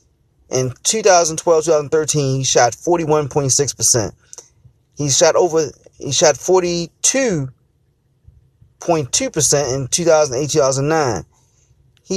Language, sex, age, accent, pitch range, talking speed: English, male, 30-49, American, 125-170 Hz, 95 wpm